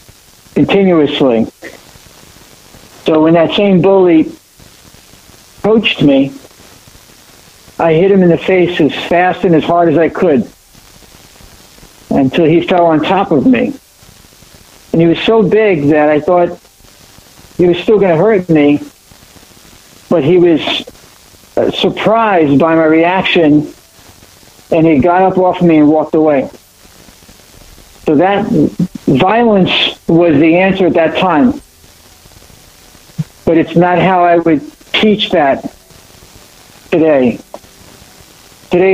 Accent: American